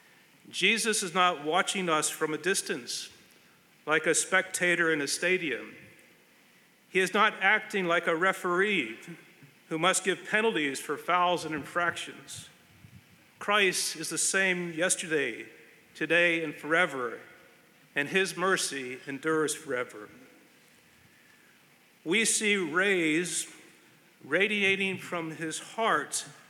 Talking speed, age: 110 wpm, 50-69